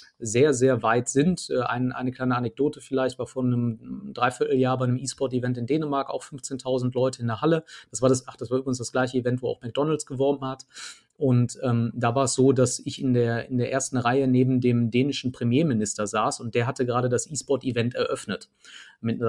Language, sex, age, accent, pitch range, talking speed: German, male, 30-49, German, 120-135 Hz, 195 wpm